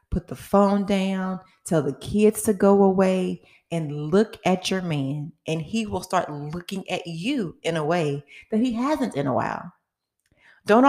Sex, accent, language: female, American, English